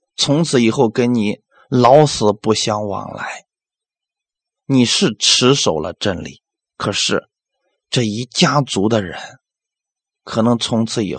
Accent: native